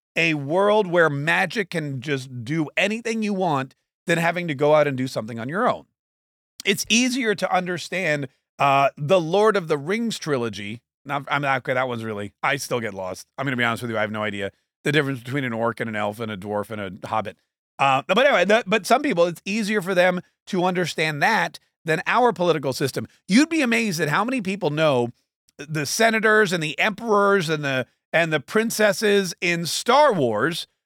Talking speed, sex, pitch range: 210 wpm, male, 135-200 Hz